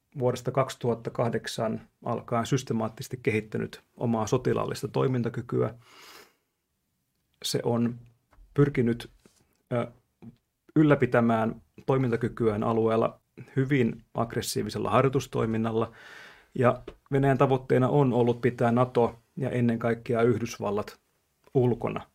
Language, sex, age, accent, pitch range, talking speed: Finnish, male, 30-49, native, 115-135 Hz, 75 wpm